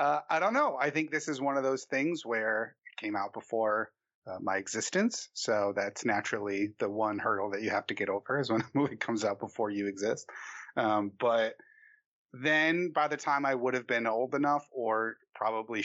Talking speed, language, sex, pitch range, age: 210 wpm, English, male, 105-130 Hz, 30-49